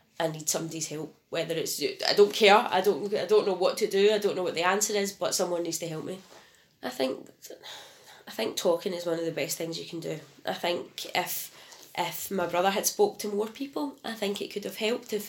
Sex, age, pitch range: female, 20-39, 165-200 Hz